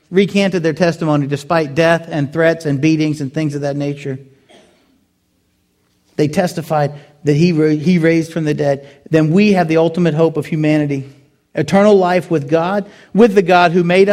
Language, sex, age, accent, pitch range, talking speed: English, male, 40-59, American, 165-235 Hz, 170 wpm